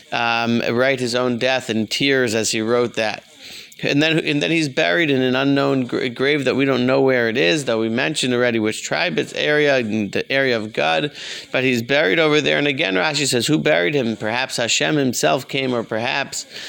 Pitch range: 115-145 Hz